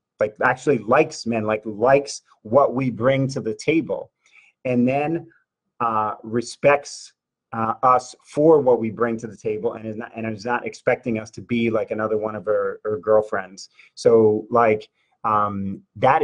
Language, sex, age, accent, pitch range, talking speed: English, male, 30-49, American, 110-135 Hz, 170 wpm